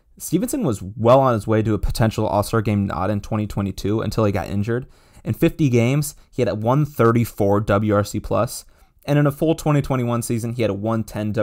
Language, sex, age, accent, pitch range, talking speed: English, male, 20-39, American, 105-130 Hz, 195 wpm